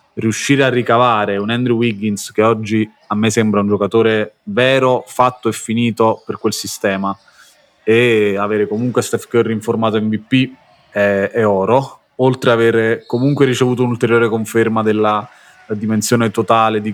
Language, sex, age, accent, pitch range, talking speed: Italian, male, 20-39, native, 105-120 Hz, 150 wpm